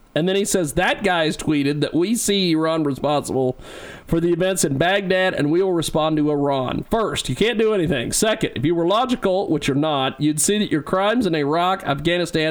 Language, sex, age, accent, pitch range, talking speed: English, male, 40-59, American, 130-195 Hz, 210 wpm